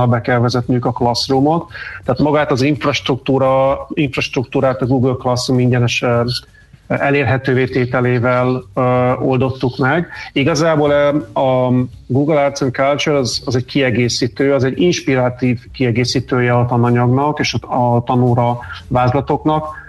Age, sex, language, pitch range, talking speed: 30-49, male, Hungarian, 125-145 Hz, 120 wpm